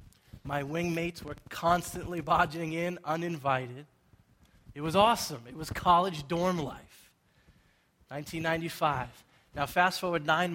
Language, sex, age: English, male, 20-39